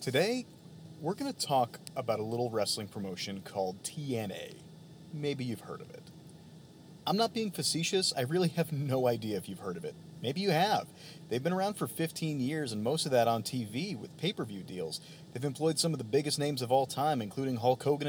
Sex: male